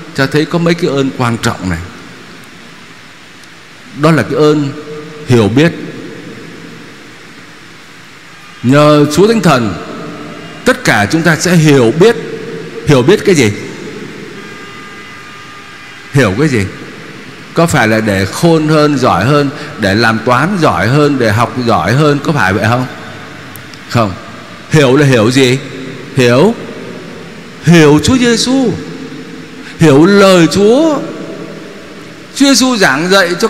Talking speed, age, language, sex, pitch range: 125 wpm, 60-79, Vietnamese, male, 140-190 Hz